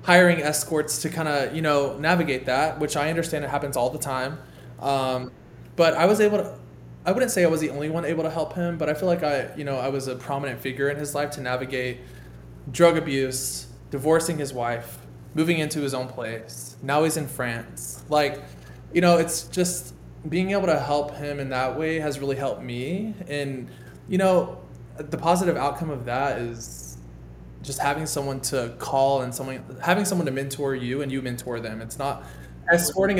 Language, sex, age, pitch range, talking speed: English, male, 20-39, 125-155 Hz, 200 wpm